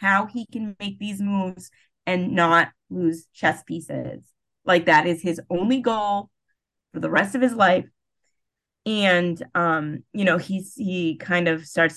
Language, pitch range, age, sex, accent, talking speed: English, 160-200 Hz, 20-39, female, American, 160 wpm